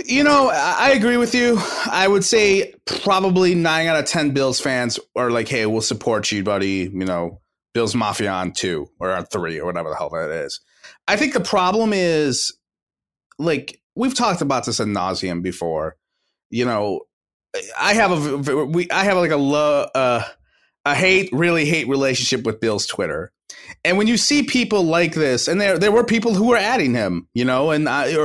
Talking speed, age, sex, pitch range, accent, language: 190 wpm, 30-49, male, 125-195 Hz, American, English